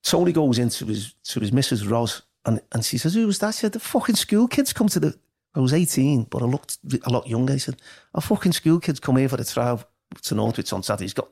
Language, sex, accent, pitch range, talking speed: English, male, British, 110-135 Hz, 265 wpm